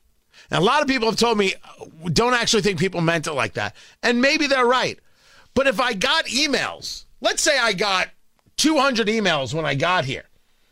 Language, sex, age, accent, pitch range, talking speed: English, male, 40-59, American, 165-265 Hz, 195 wpm